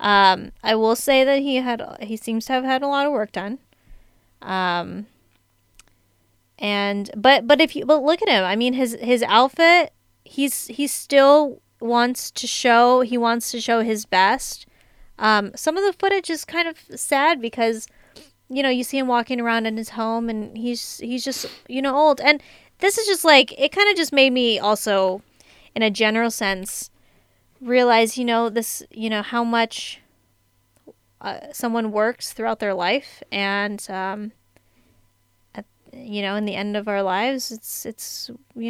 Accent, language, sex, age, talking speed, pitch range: American, English, female, 20-39, 180 wpm, 205-270 Hz